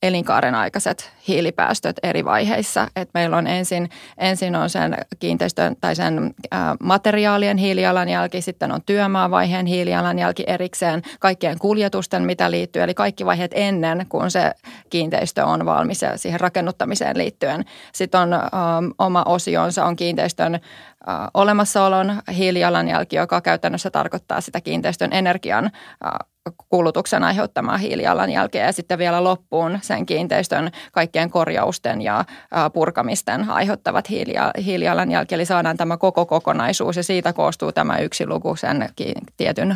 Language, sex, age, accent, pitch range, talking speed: Finnish, female, 20-39, native, 165-185 Hz, 120 wpm